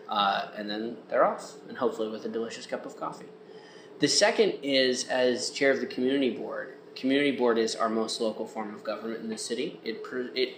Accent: American